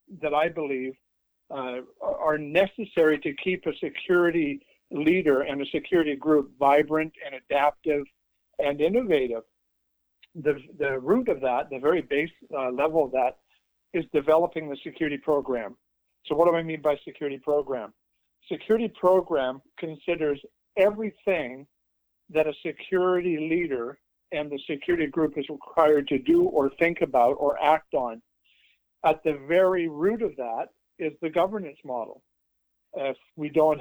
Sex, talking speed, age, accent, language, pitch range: male, 140 wpm, 50-69, American, English, 140-170 Hz